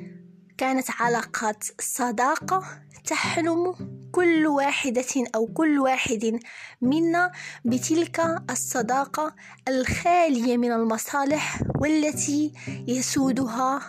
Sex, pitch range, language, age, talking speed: female, 235-290 Hz, Arabic, 20-39, 75 wpm